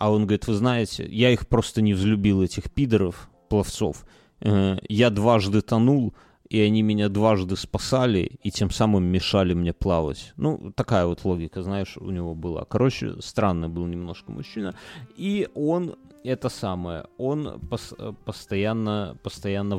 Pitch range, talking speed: 95-120 Hz, 145 wpm